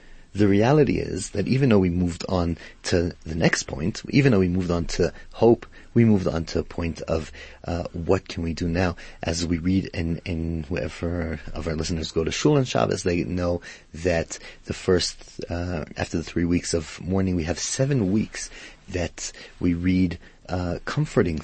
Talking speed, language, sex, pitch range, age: 190 wpm, English, male, 85-110 Hz, 30-49